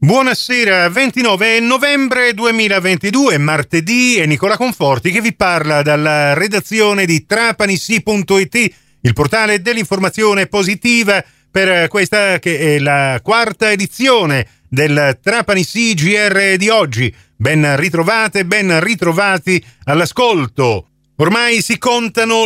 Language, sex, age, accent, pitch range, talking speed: Italian, male, 40-59, native, 150-210 Hz, 105 wpm